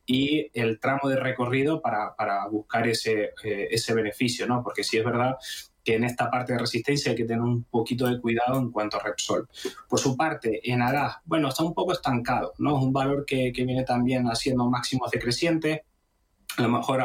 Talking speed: 205 wpm